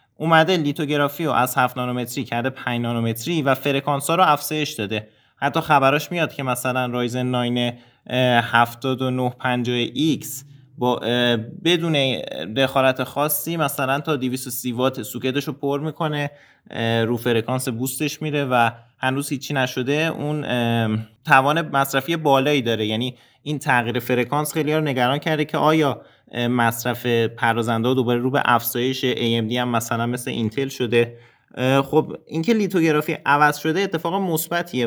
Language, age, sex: Persian, 20-39, male